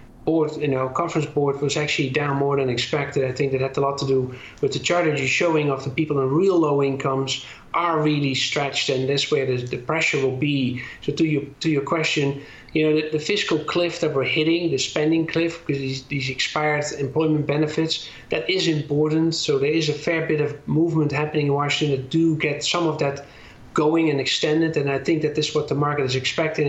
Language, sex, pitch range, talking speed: English, male, 140-160 Hz, 225 wpm